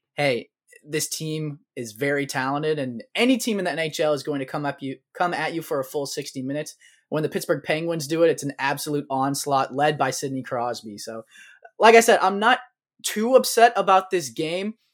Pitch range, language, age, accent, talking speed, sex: 135-175 Hz, English, 20-39, American, 205 wpm, male